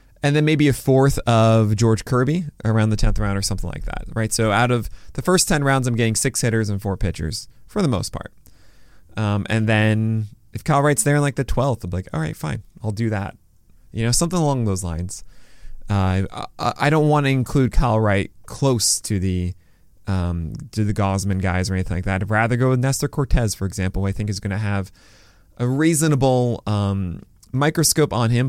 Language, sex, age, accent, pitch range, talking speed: English, male, 20-39, American, 100-135 Hz, 215 wpm